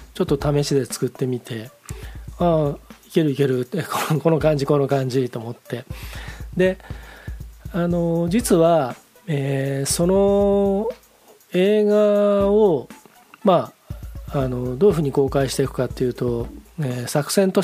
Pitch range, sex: 125-175 Hz, male